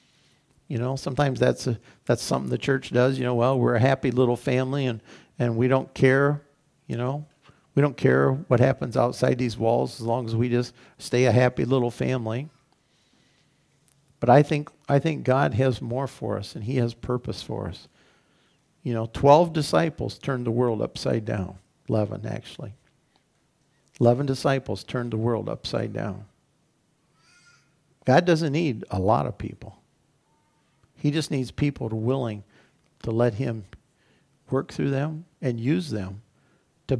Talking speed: 160 wpm